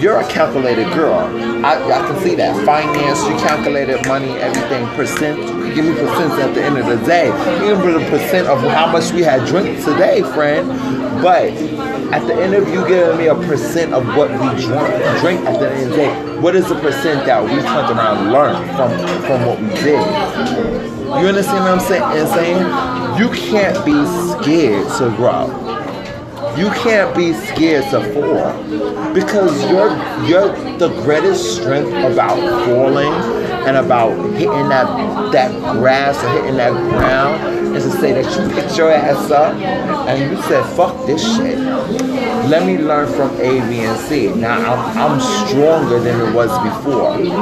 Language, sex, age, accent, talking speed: English, male, 30-49, American, 175 wpm